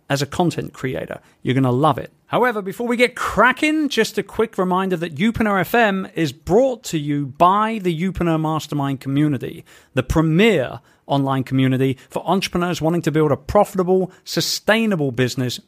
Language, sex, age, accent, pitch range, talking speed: English, male, 40-59, British, 135-195 Hz, 165 wpm